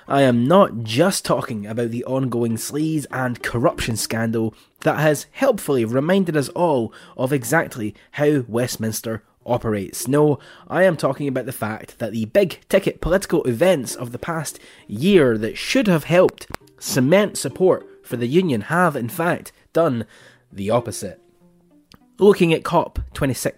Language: English